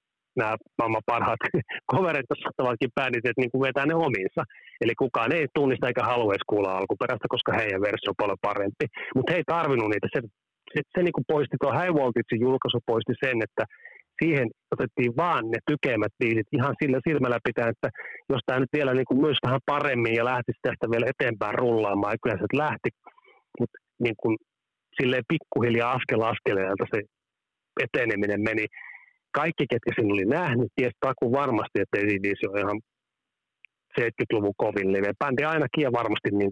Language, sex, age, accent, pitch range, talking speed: Finnish, male, 30-49, native, 115-140 Hz, 165 wpm